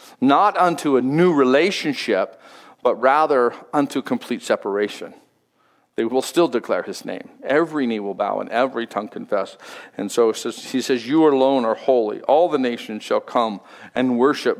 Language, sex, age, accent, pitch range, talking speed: English, male, 50-69, American, 115-145 Hz, 160 wpm